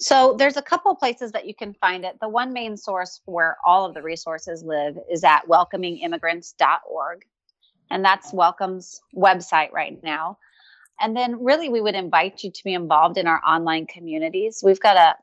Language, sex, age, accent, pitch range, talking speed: English, female, 30-49, American, 170-210 Hz, 180 wpm